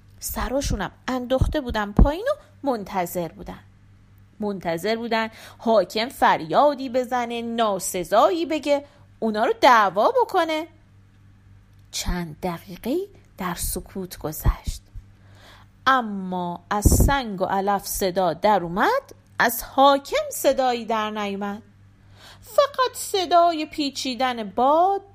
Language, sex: Persian, female